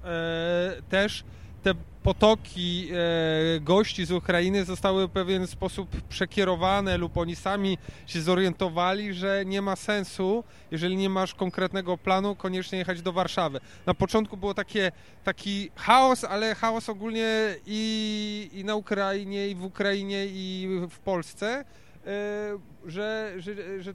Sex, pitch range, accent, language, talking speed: male, 180-205 Hz, native, Polish, 130 wpm